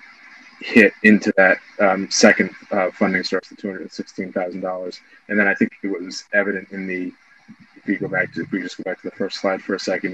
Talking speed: 235 wpm